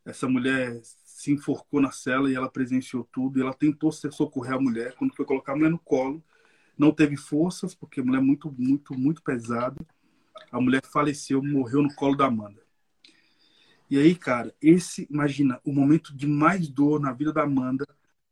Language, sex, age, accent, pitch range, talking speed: Portuguese, male, 20-39, Brazilian, 130-155 Hz, 185 wpm